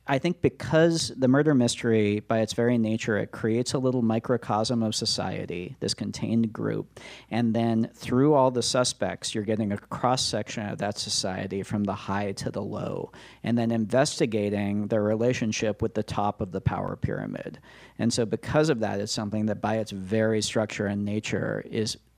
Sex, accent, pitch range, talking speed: male, American, 105-125 Hz, 180 wpm